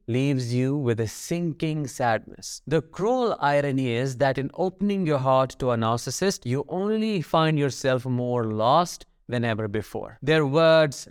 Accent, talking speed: Indian, 155 wpm